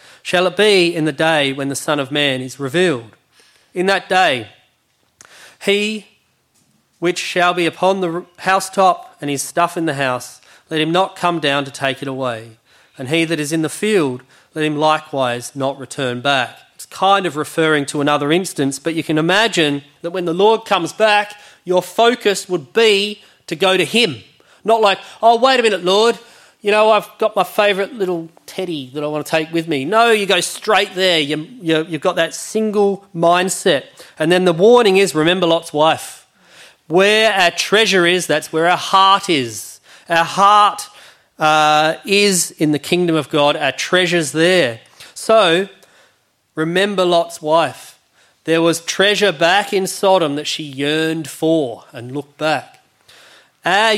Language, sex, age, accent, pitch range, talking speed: English, male, 30-49, Australian, 150-195 Hz, 175 wpm